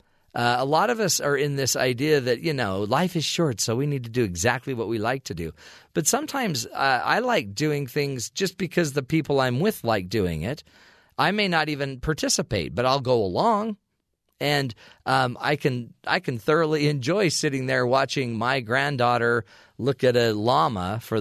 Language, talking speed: English, 190 wpm